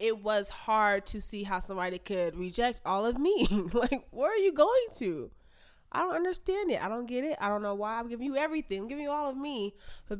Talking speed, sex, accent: 240 wpm, female, American